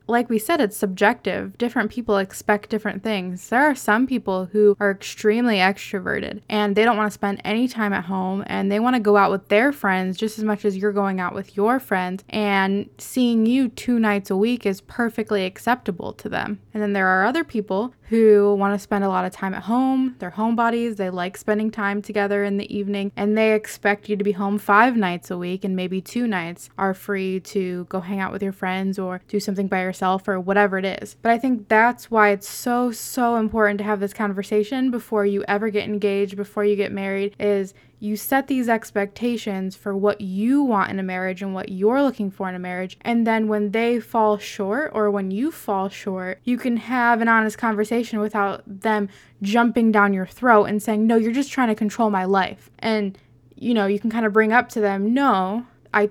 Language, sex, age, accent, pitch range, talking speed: English, female, 20-39, American, 195-225 Hz, 220 wpm